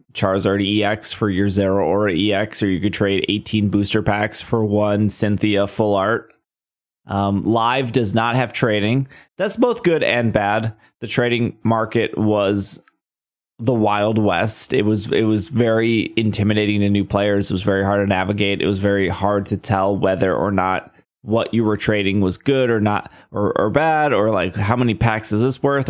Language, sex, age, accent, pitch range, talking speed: English, male, 20-39, American, 100-120 Hz, 185 wpm